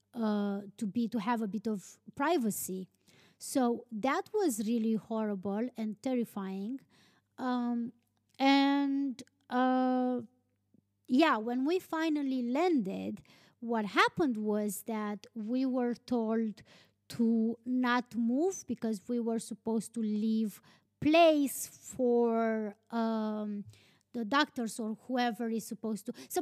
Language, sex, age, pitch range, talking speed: English, female, 20-39, 215-265 Hz, 115 wpm